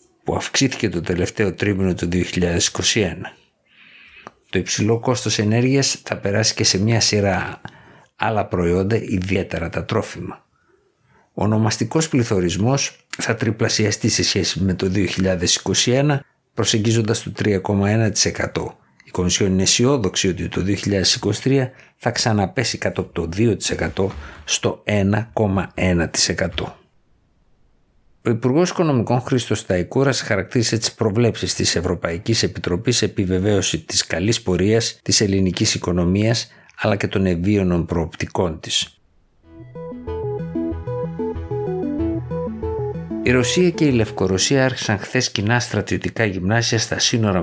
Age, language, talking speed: 60-79, Greek, 110 wpm